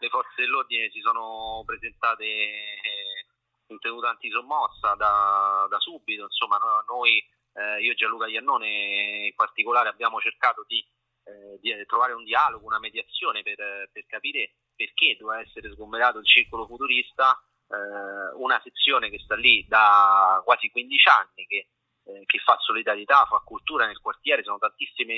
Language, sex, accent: Italian, male, native